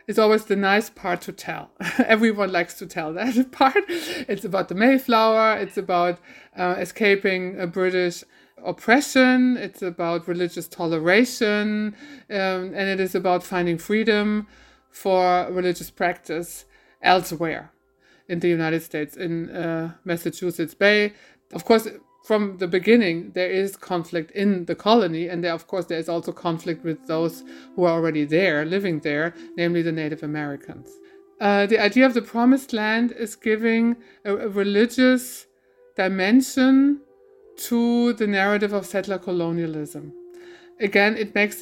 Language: English